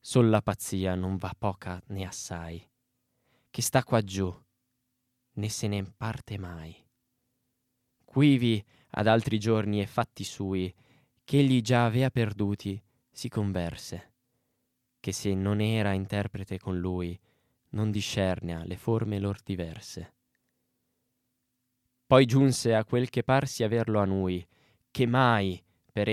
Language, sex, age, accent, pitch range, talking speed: Italian, male, 20-39, native, 100-125 Hz, 125 wpm